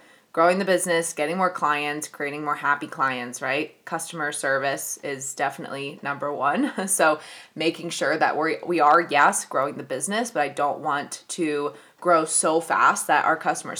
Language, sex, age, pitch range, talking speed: English, female, 20-39, 160-220 Hz, 165 wpm